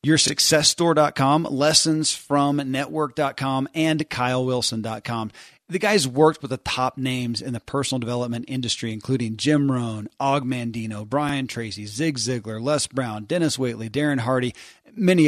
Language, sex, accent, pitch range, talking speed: English, male, American, 120-150 Hz, 120 wpm